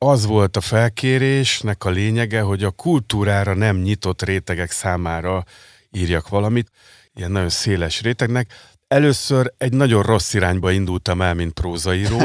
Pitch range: 90-115 Hz